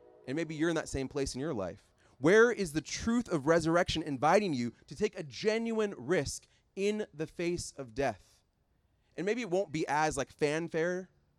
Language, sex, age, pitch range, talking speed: English, male, 30-49, 115-160 Hz, 190 wpm